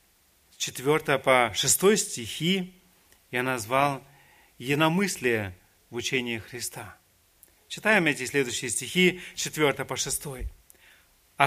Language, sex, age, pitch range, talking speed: Russian, male, 40-59, 120-170 Hz, 95 wpm